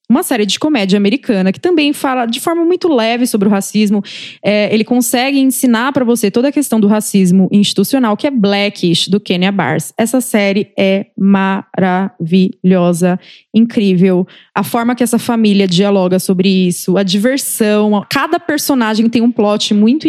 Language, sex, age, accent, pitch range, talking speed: Portuguese, female, 20-39, Brazilian, 200-245 Hz, 160 wpm